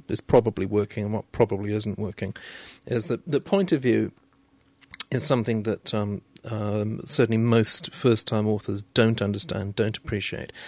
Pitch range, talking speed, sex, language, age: 105-125 Hz, 150 wpm, male, English, 40-59